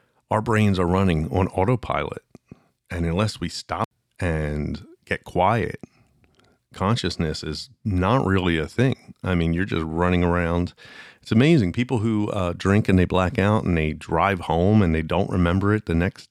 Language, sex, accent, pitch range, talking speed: English, male, American, 80-115 Hz, 170 wpm